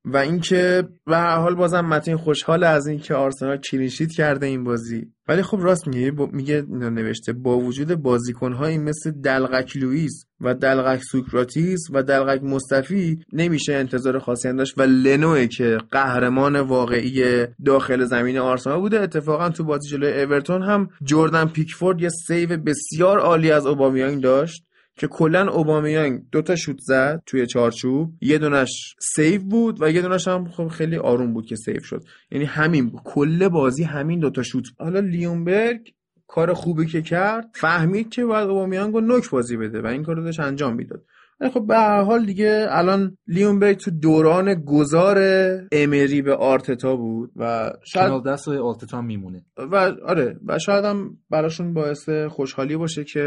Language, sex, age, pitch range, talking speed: Persian, male, 20-39, 130-175 Hz, 165 wpm